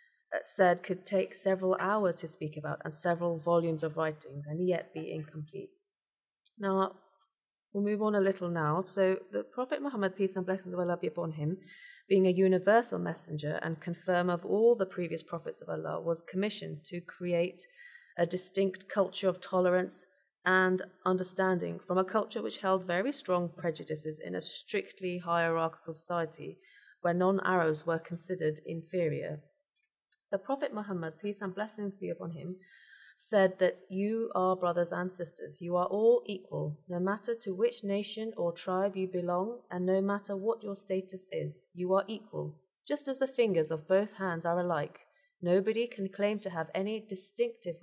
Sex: female